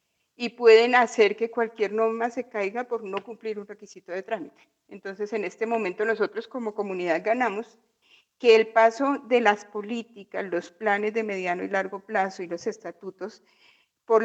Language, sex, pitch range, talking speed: Spanish, female, 205-240 Hz, 170 wpm